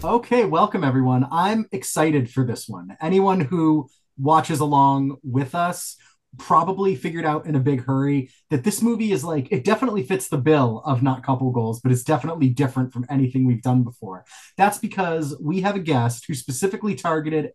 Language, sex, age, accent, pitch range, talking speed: English, male, 30-49, American, 130-175 Hz, 180 wpm